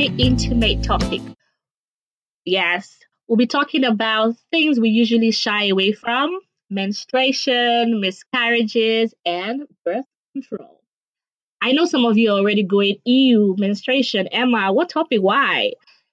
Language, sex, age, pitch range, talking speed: English, female, 20-39, 215-260 Hz, 120 wpm